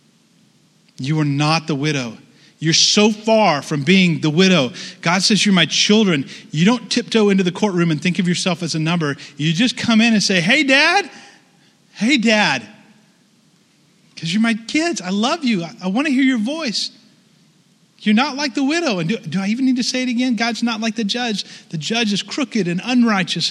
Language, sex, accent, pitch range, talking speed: English, male, American, 170-225 Hz, 200 wpm